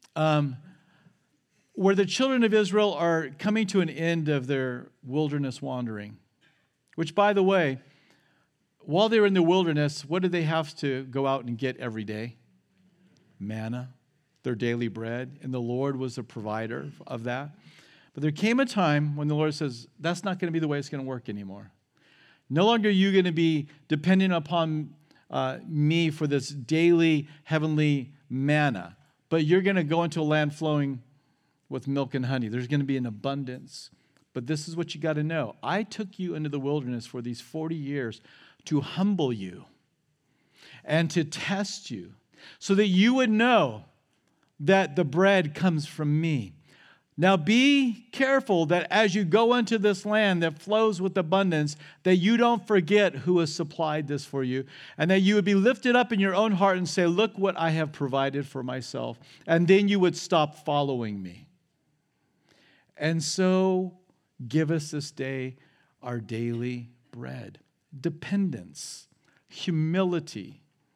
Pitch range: 135-185 Hz